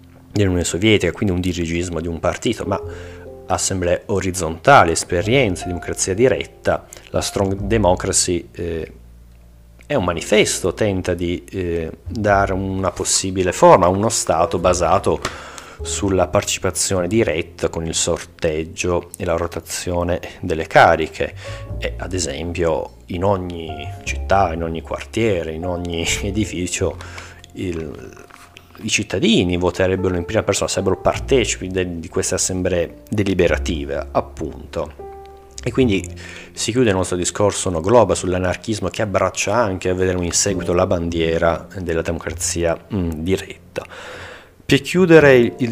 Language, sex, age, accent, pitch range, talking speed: Italian, male, 30-49, native, 85-100 Hz, 125 wpm